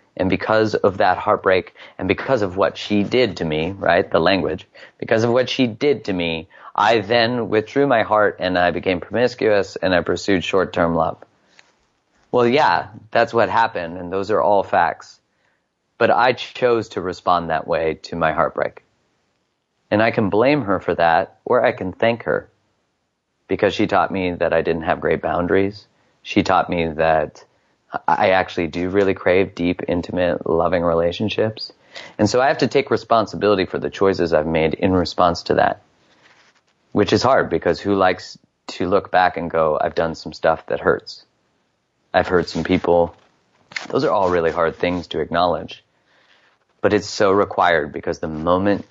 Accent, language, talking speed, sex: American, English, 175 wpm, male